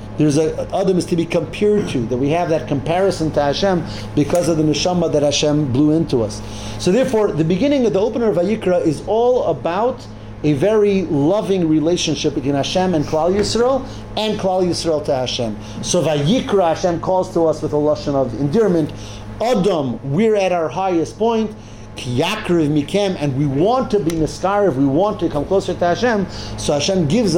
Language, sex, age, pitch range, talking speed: English, male, 50-69, 135-185 Hz, 180 wpm